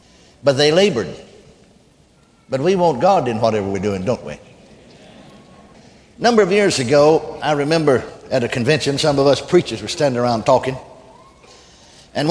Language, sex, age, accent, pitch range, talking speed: English, male, 60-79, American, 130-160 Hz, 155 wpm